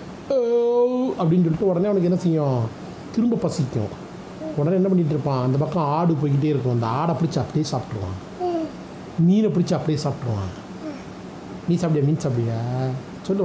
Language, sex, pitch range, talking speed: Tamil, male, 140-190 Hz, 140 wpm